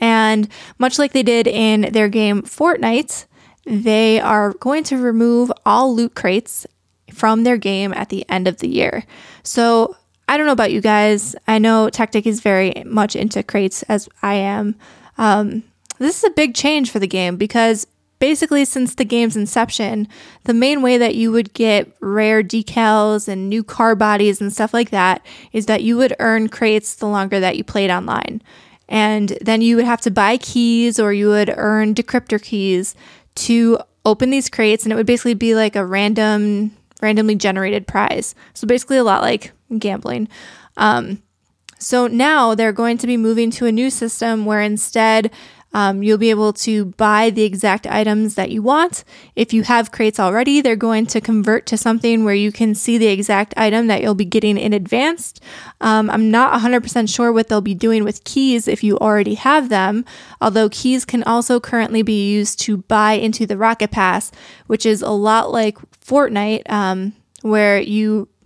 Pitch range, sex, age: 210-235 Hz, female, 20-39